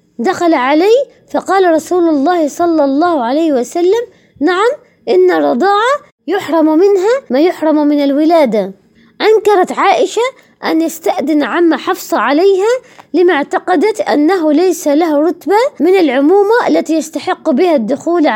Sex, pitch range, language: female, 300-385 Hz, Arabic